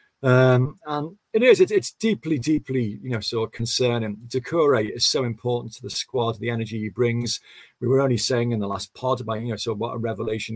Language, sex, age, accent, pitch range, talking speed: English, male, 40-59, British, 120-135 Hz, 235 wpm